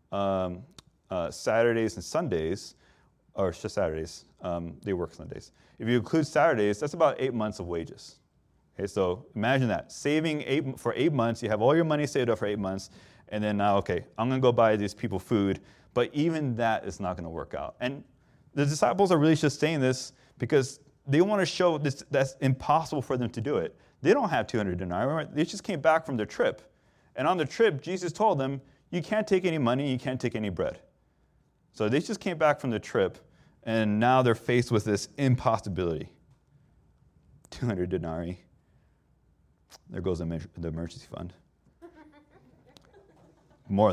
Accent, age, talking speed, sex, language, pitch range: American, 30-49, 180 wpm, male, English, 100-145 Hz